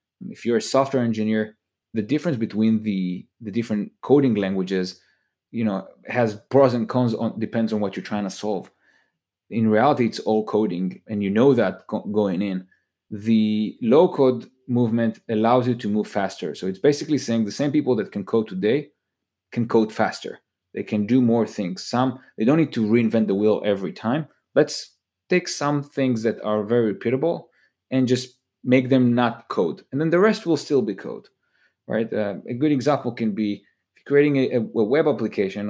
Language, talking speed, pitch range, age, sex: English, 185 wpm, 105-125 Hz, 20-39, male